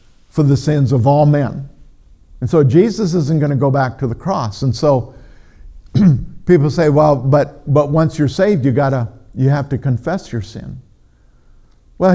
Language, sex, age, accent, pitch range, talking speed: English, male, 50-69, American, 110-150 Hz, 175 wpm